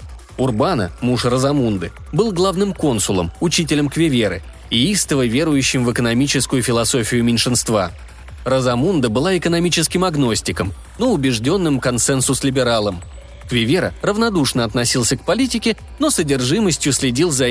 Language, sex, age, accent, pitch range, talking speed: Russian, male, 20-39, native, 115-145 Hz, 105 wpm